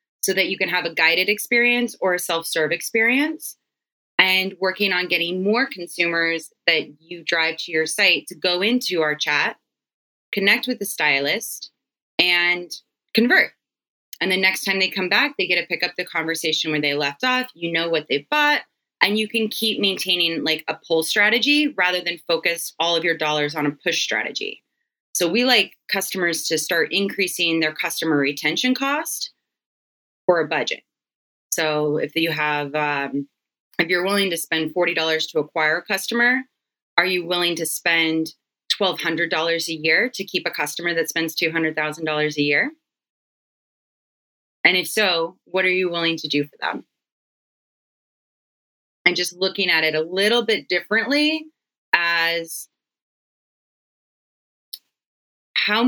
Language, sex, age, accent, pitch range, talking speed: English, female, 20-39, American, 160-205 Hz, 165 wpm